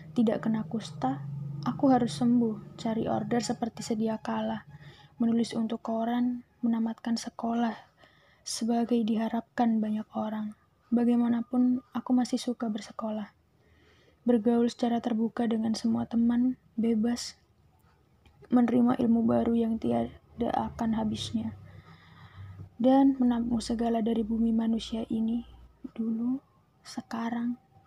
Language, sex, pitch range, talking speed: Indonesian, female, 225-245 Hz, 105 wpm